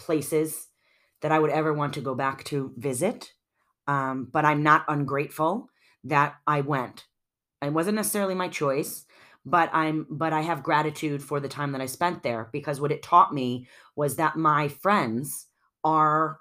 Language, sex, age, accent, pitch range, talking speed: English, female, 30-49, American, 140-170 Hz, 175 wpm